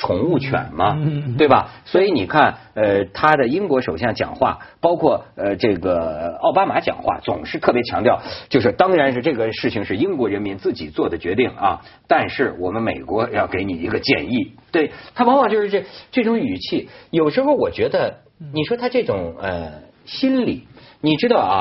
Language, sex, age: Chinese, male, 50-69